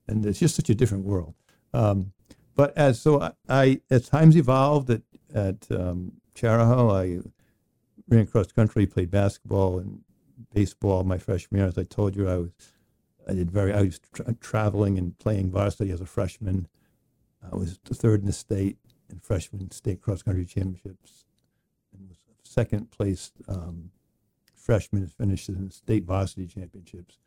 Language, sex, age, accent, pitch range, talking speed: English, male, 60-79, American, 95-115 Hz, 165 wpm